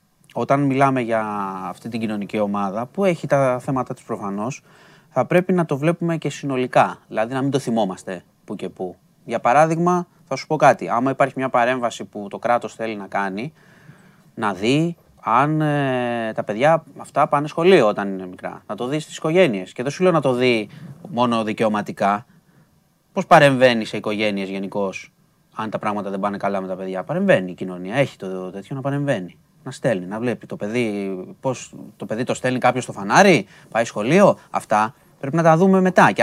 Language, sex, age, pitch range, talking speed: Greek, male, 20-39, 110-160 Hz, 190 wpm